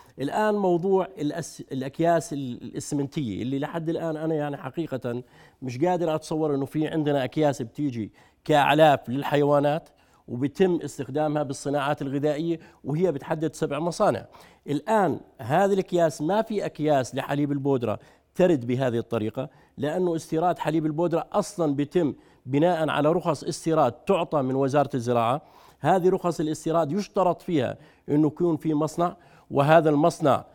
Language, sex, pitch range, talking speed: Arabic, male, 145-175 Hz, 125 wpm